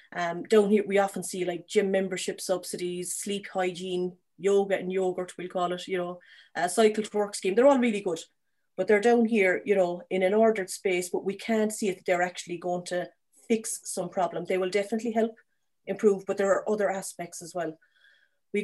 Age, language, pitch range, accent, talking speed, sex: 30-49, English, 175-200 Hz, Irish, 210 wpm, female